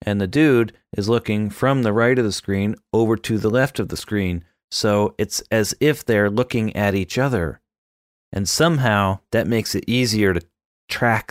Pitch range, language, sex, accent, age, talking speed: 95-120 Hz, English, male, American, 30-49, 185 wpm